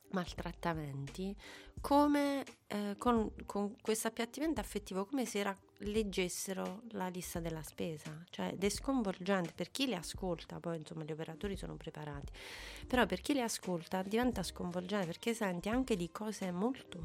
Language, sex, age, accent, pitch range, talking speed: Italian, female, 30-49, native, 170-210 Hz, 150 wpm